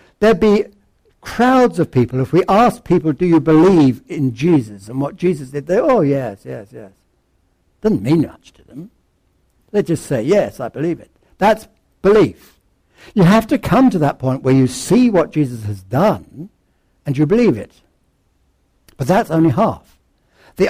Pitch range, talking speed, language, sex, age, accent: 115-170 Hz, 175 wpm, English, male, 60-79, British